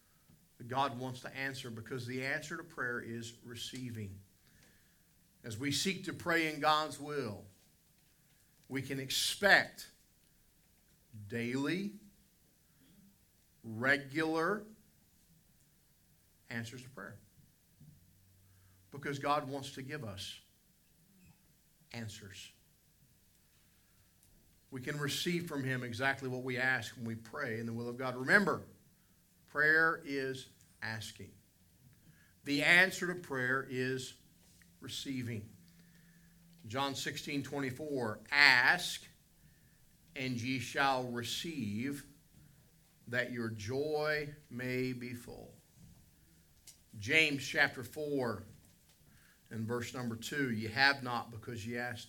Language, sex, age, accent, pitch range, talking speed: English, male, 50-69, American, 115-145 Hz, 105 wpm